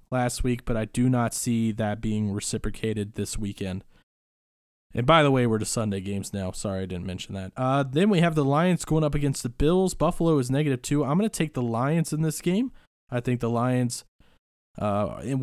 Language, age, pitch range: English, 20-39, 115-145 Hz